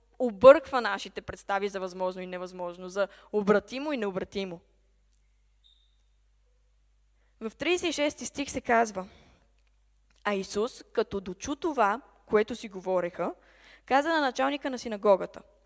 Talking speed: 110 wpm